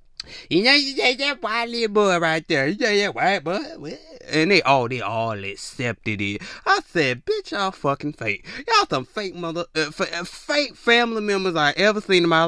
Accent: American